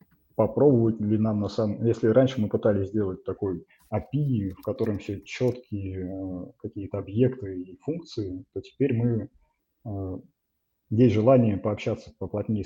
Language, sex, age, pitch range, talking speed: Russian, male, 20-39, 100-120 Hz, 130 wpm